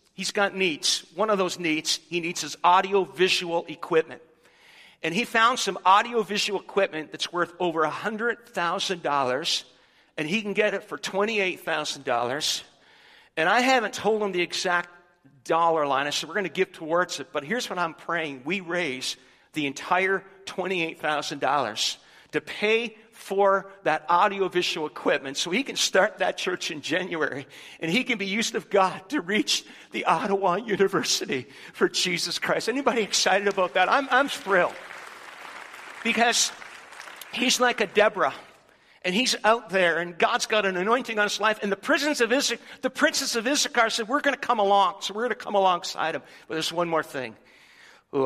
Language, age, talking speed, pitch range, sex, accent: English, 50-69, 180 wpm, 170-225 Hz, male, American